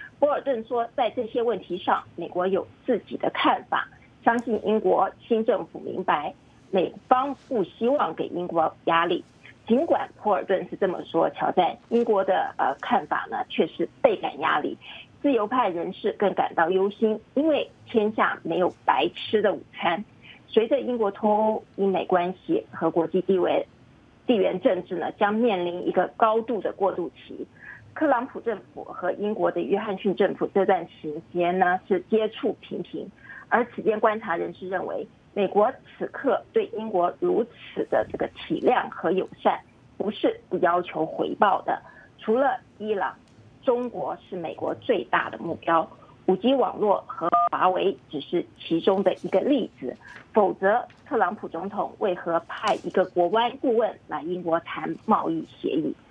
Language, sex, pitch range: English, female, 175-235 Hz